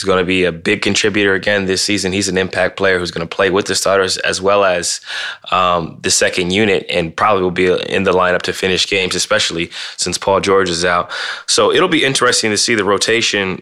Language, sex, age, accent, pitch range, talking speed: English, male, 20-39, American, 90-105 Hz, 225 wpm